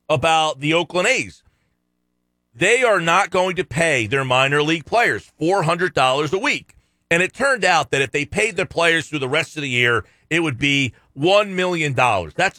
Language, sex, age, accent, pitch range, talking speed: English, male, 40-59, American, 120-175 Hz, 185 wpm